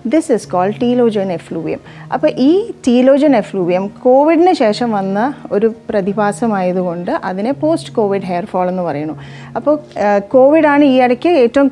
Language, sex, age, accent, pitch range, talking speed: Malayalam, female, 30-49, native, 185-245 Hz, 130 wpm